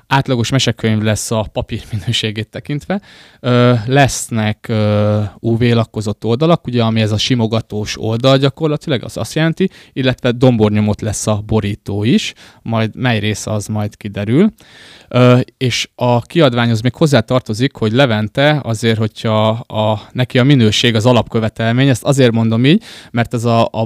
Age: 20-39